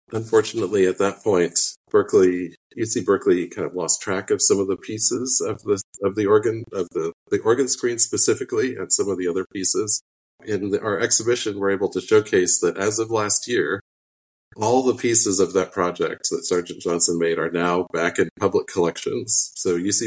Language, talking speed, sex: English, 190 wpm, male